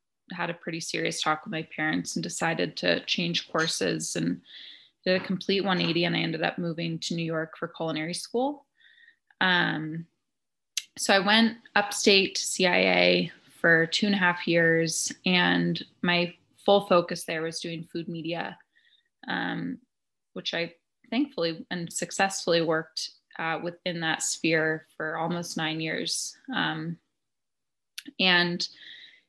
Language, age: English, 20-39